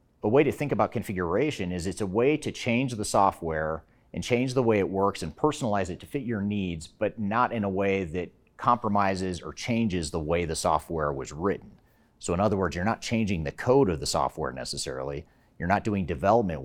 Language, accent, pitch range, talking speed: English, American, 85-110 Hz, 215 wpm